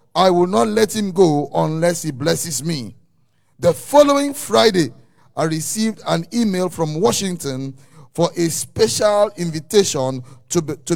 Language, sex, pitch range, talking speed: English, male, 145-200 Hz, 135 wpm